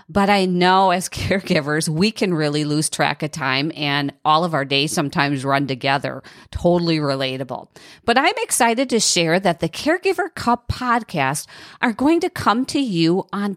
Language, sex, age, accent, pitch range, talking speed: English, female, 40-59, American, 160-245 Hz, 170 wpm